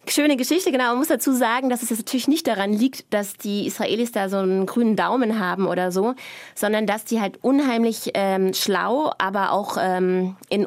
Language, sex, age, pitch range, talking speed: German, female, 20-39, 205-265 Hz, 195 wpm